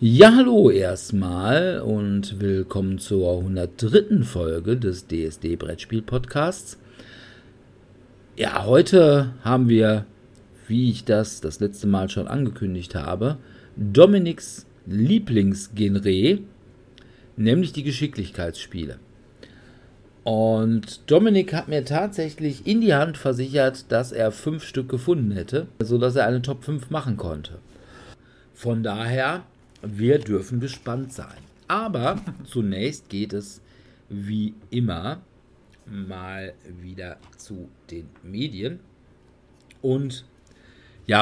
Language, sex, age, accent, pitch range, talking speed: German, male, 50-69, German, 95-125 Hz, 105 wpm